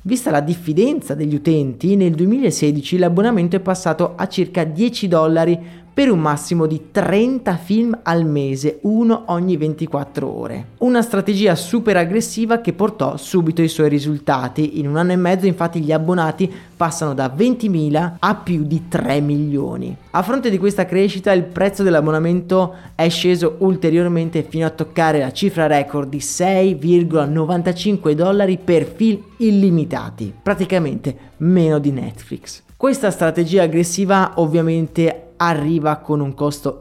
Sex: male